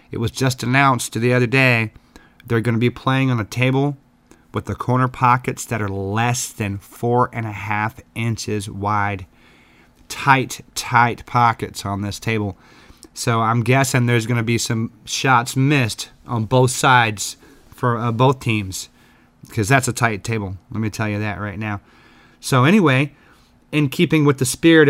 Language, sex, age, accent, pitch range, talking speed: English, male, 30-49, American, 115-135 Hz, 170 wpm